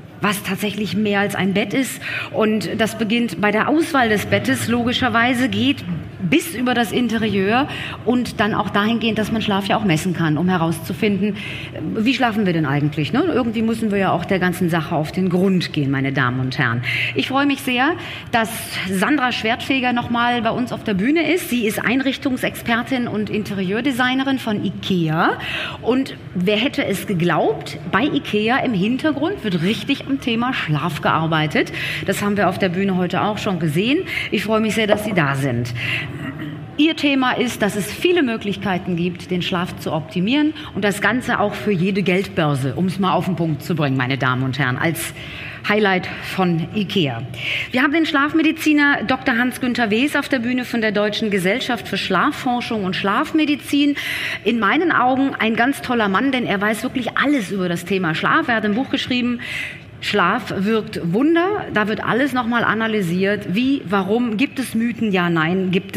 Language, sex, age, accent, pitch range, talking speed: German, female, 30-49, German, 175-245 Hz, 180 wpm